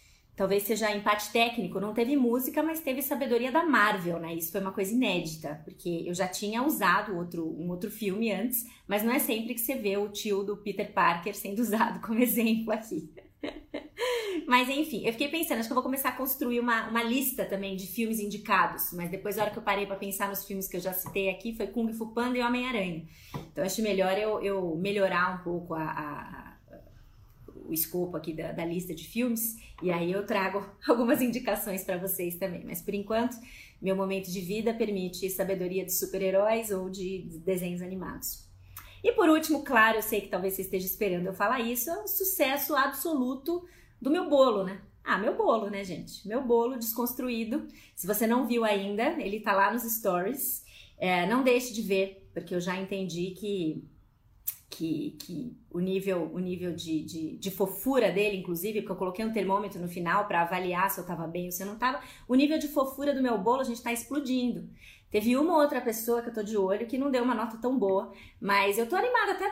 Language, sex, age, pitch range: Portuguese, female, 30-49, 190-245 Hz